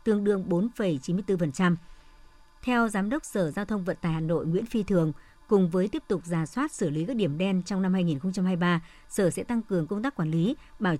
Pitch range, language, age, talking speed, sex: 170-210 Hz, Vietnamese, 60-79, 215 wpm, male